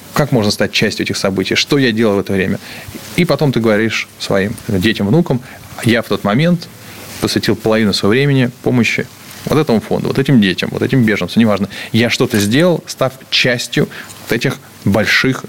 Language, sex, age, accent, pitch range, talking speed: Russian, male, 20-39, native, 105-130 Hz, 175 wpm